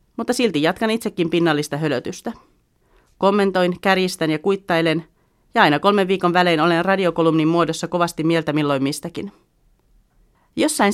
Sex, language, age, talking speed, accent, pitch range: female, Finnish, 40-59, 125 wpm, native, 155-200 Hz